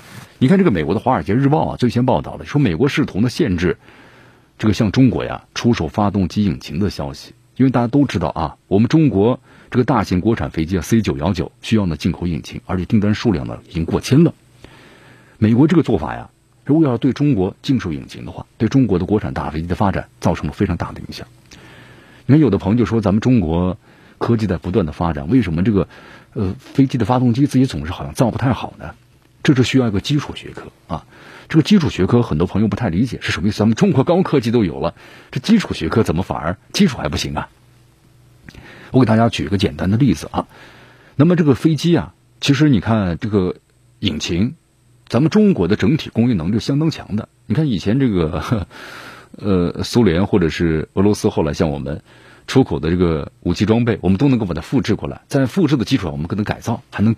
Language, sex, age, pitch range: Chinese, male, 50-69, 95-130 Hz